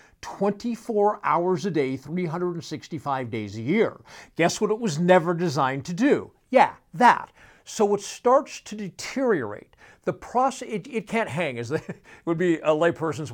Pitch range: 140-215 Hz